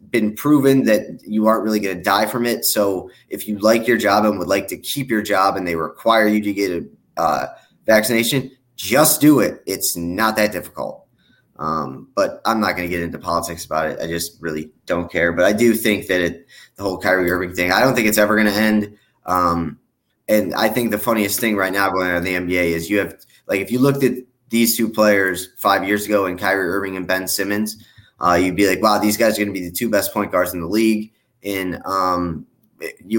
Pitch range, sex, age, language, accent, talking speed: 95-115 Hz, male, 20-39, English, American, 235 wpm